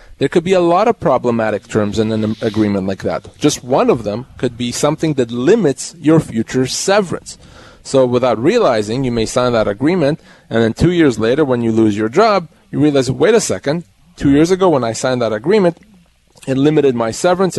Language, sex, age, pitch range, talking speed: English, male, 30-49, 120-155 Hz, 205 wpm